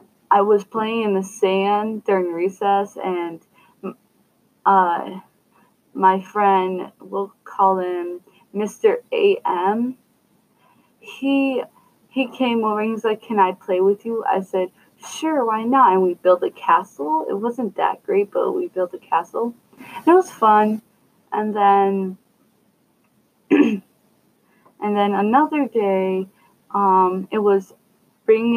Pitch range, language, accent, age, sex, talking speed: 190-225 Hz, English, American, 20-39, female, 130 wpm